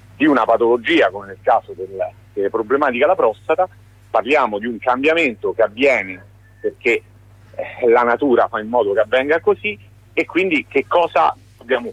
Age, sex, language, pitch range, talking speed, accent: 40-59, male, Italian, 110-170 Hz, 160 wpm, native